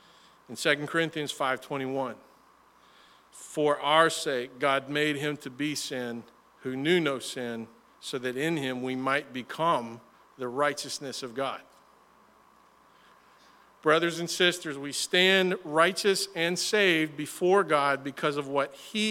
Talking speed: 130 wpm